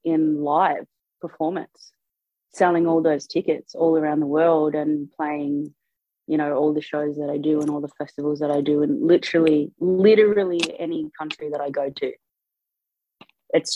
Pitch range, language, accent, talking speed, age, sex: 150-175 Hz, English, Australian, 165 wpm, 20-39, female